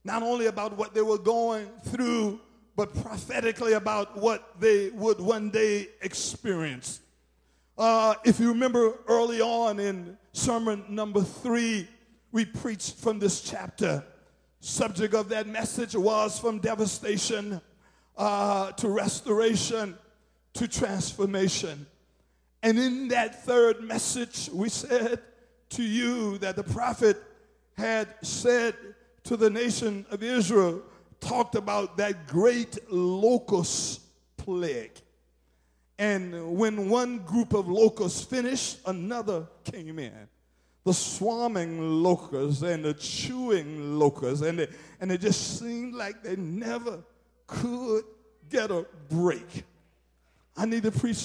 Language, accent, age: English, American, 50-69